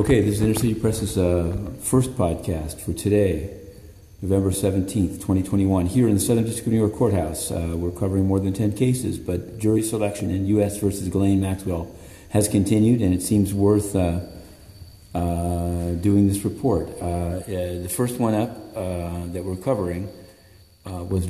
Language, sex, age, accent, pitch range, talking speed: English, male, 50-69, American, 85-105 Hz, 170 wpm